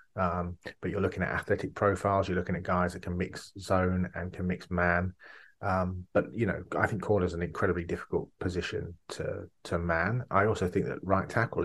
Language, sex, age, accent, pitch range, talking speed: English, male, 30-49, British, 90-100 Hz, 205 wpm